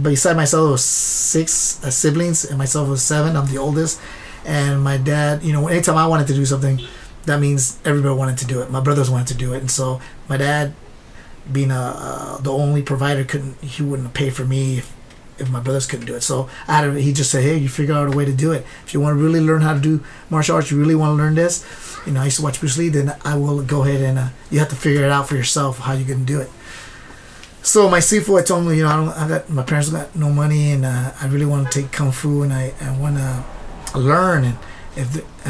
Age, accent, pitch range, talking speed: 30-49, American, 130-150 Hz, 255 wpm